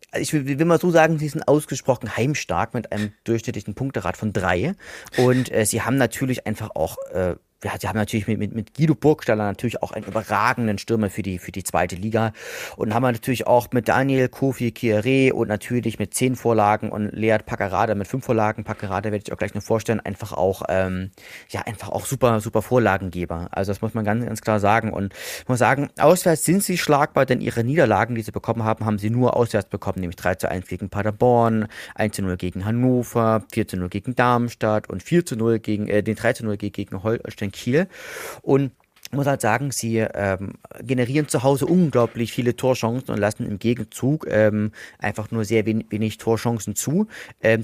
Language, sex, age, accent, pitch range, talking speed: German, male, 30-49, German, 105-125 Hz, 200 wpm